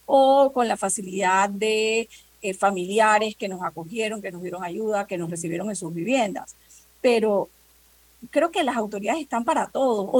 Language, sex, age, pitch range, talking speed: Spanish, female, 40-59, 190-235 Hz, 170 wpm